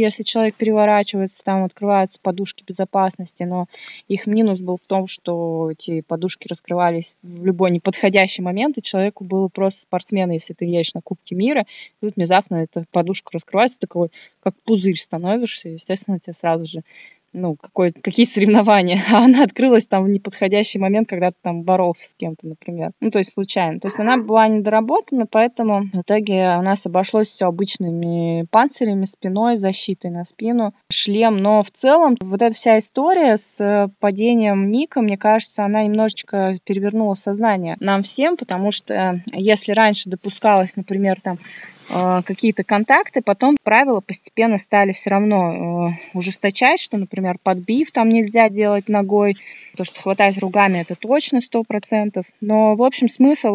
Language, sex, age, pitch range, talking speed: Russian, female, 20-39, 185-225 Hz, 155 wpm